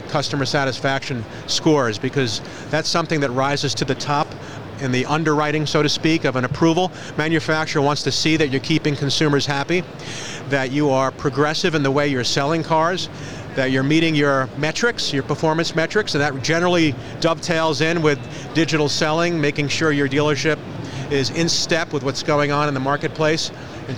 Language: English